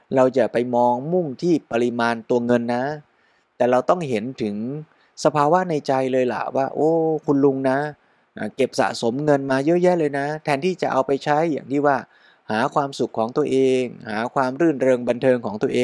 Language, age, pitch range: Thai, 20-39, 125-160 Hz